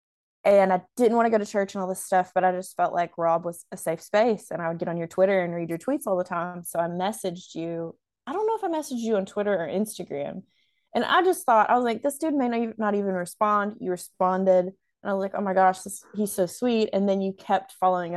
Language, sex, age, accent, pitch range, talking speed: English, female, 20-39, American, 180-210 Hz, 270 wpm